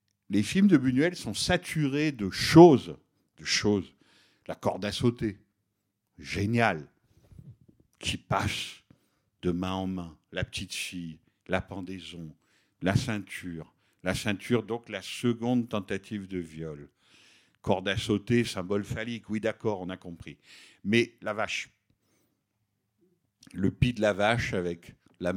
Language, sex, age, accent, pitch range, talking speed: French, male, 50-69, French, 100-125 Hz, 130 wpm